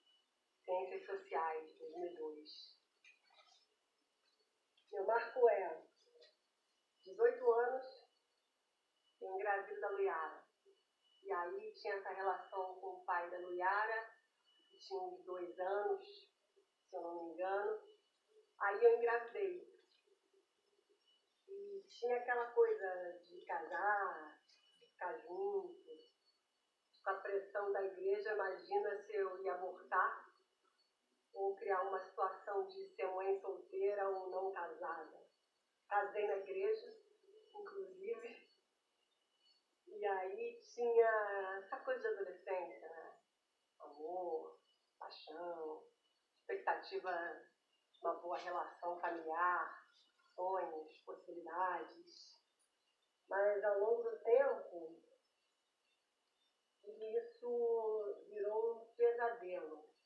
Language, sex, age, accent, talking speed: Portuguese, female, 40-59, Brazilian, 95 wpm